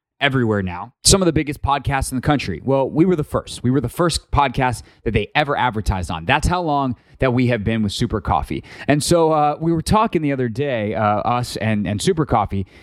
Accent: American